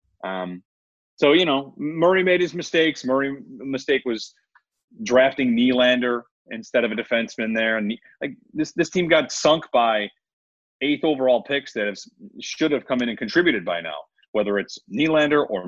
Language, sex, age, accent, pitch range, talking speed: English, male, 30-49, American, 110-160 Hz, 165 wpm